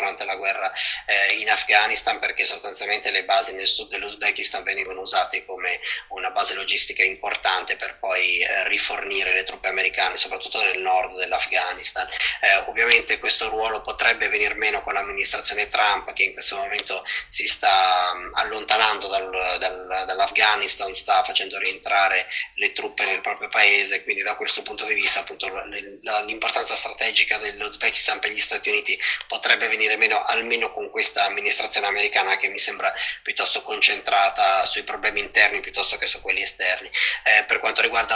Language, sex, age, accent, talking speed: Italian, male, 20-39, native, 155 wpm